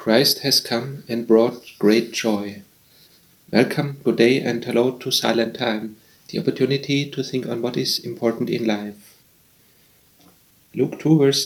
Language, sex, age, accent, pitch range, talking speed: English, male, 40-59, German, 115-130 Hz, 145 wpm